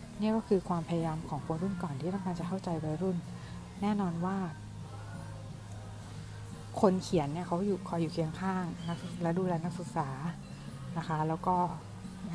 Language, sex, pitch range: Thai, female, 155-185 Hz